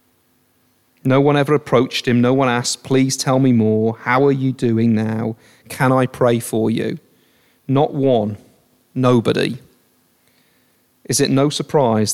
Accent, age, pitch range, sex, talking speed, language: British, 40-59, 125-150 Hz, male, 145 wpm, English